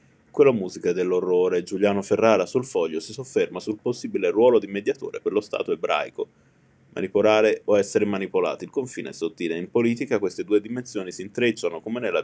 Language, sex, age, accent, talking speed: Italian, male, 20-39, native, 170 wpm